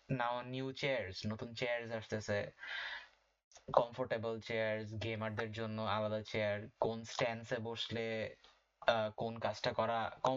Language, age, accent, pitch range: Bengali, 20-39, native, 115-130 Hz